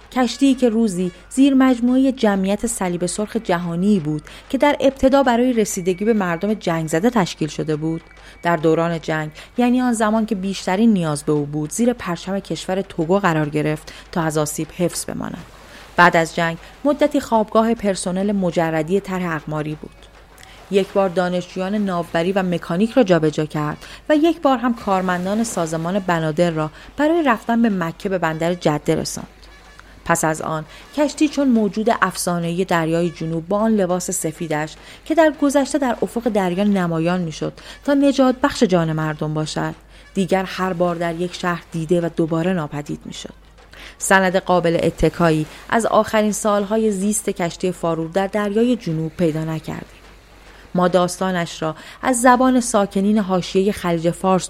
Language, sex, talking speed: Persian, female, 155 wpm